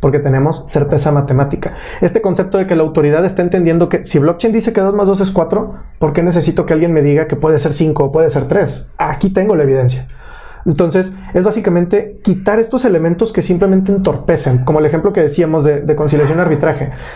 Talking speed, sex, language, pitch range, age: 210 wpm, male, Spanish, 150-195 Hz, 20-39